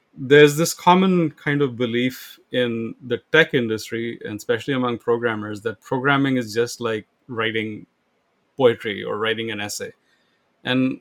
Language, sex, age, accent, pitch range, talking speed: English, male, 30-49, Indian, 115-140 Hz, 140 wpm